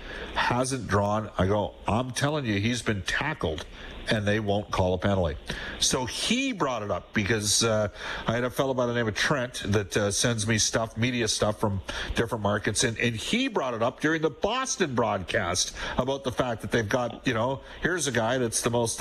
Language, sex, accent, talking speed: English, male, American, 210 wpm